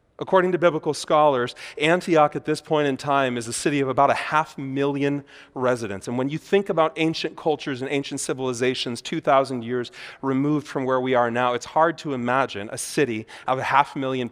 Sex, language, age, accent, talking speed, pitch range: male, English, 30-49, American, 195 wpm, 125-165 Hz